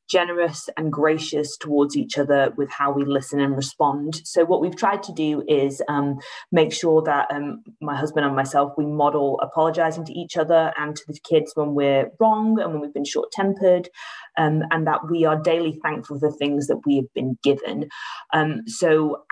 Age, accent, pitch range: 20-39, British, 140-170 Hz